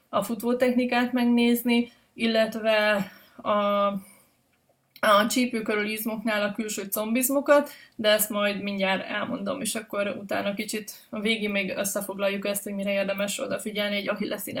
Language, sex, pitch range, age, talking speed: Hungarian, female, 210-245 Hz, 20-39, 125 wpm